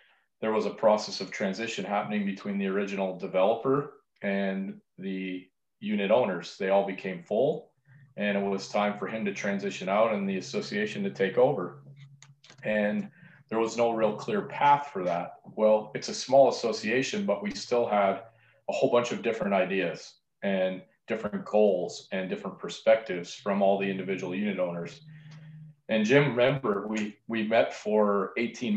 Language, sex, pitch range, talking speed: English, male, 95-130 Hz, 165 wpm